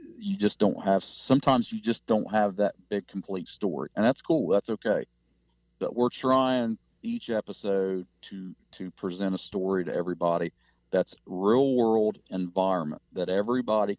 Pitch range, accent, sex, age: 90-105 Hz, American, male, 40-59